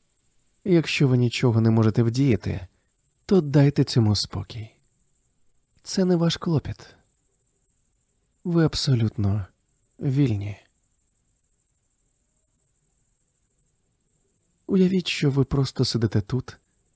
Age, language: 20-39, Ukrainian